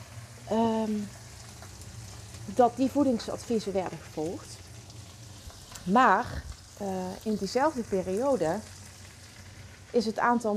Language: Dutch